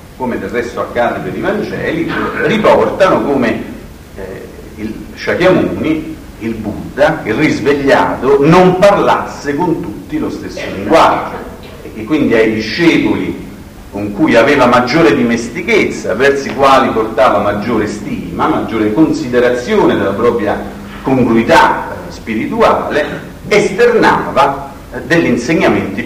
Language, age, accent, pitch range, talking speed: Italian, 50-69, native, 105-155 Hz, 115 wpm